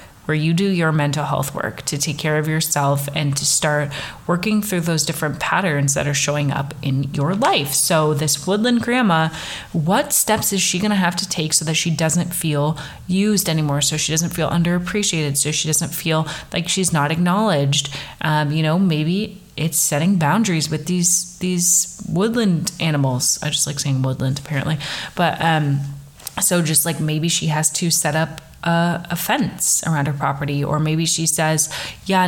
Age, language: 30-49, English